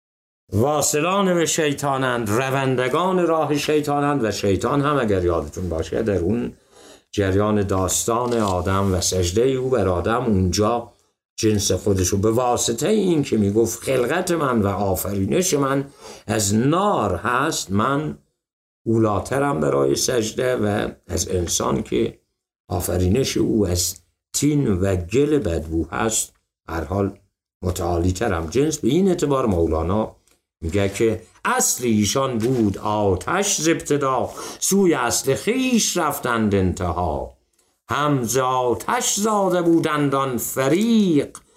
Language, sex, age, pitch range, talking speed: Persian, male, 60-79, 95-145 Hz, 115 wpm